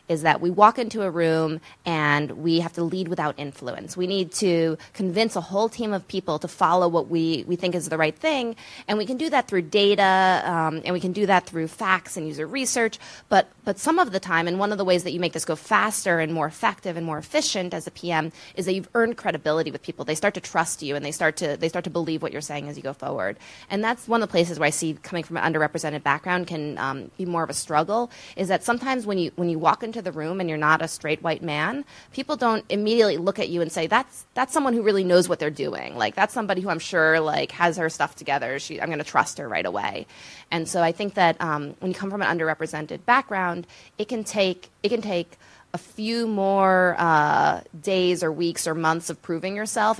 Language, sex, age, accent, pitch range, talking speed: English, female, 20-39, American, 160-200 Hz, 250 wpm